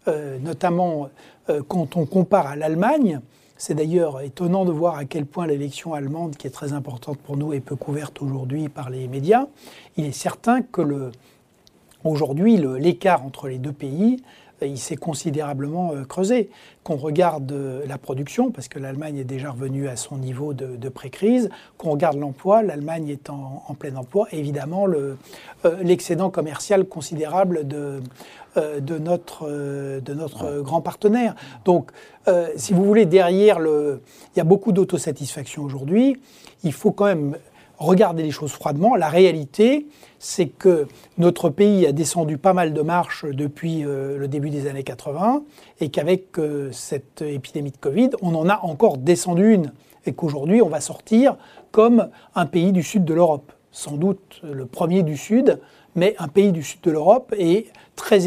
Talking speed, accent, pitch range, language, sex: 165 wpm, French, 145-185 Hz, French, male